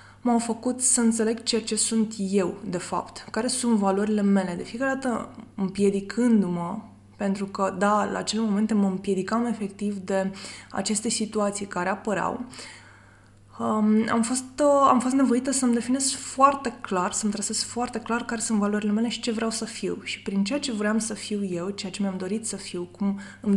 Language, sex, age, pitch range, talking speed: Romanian, female, 20-39, 190-225 Hz, 180 wpm